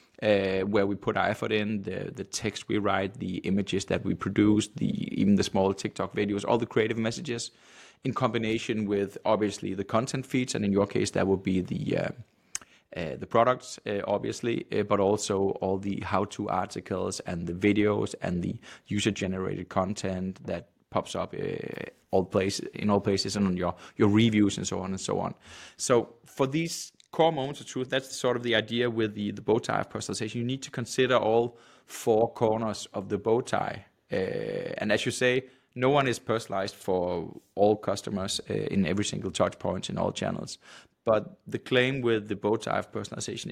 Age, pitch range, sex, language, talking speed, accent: 20-39, 100-125 Hz, male, English, 190 wpm, Danish